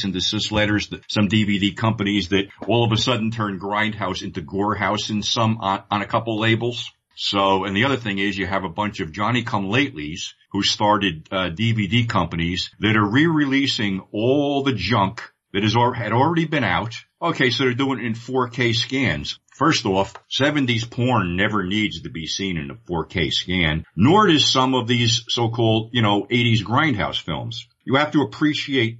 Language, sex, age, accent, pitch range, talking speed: English, male, 50-69, American, 100-130 Hz, 190 wpm